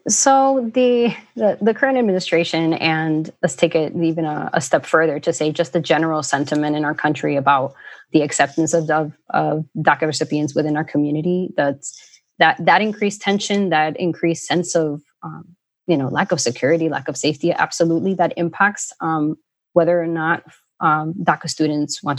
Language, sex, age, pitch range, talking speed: English, female, 20-39, 155-180 Hz, 175 wpm